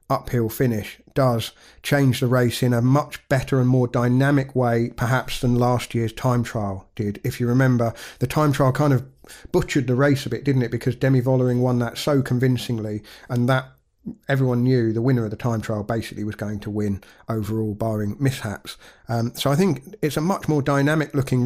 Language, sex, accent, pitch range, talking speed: English, male, British, 115-130 Hz, 200 wpm